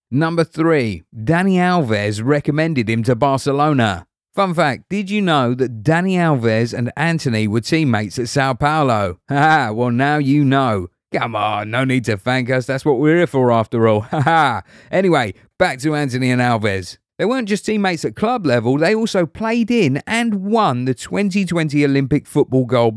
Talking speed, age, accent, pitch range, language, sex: 180 wpm, 40-59, British, 120-160 Hz, English, male